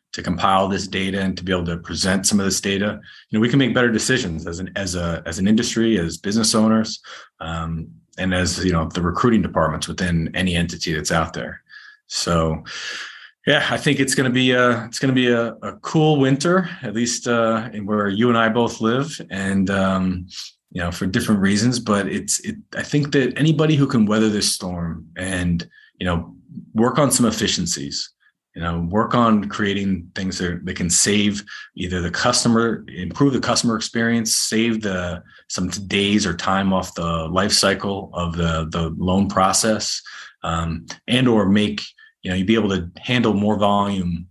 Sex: male